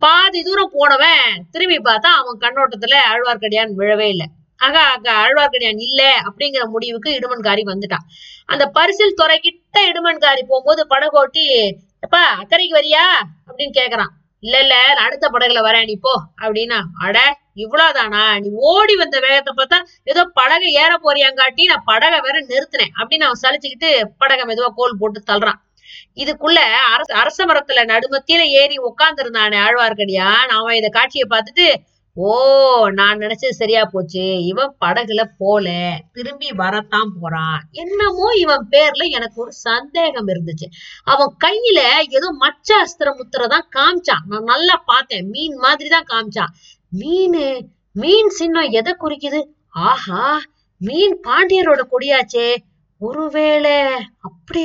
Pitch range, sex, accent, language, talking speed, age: 220-315 Hz, female, native, Tamil, 125 wpm, 20-39